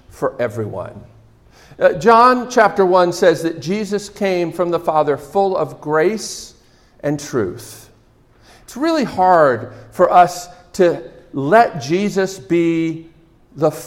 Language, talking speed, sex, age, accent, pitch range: English, 115 wpm, male, 50-69, American, 150-205 Hz